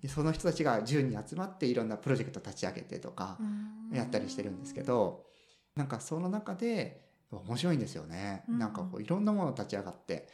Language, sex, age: Japanese, male, 30-49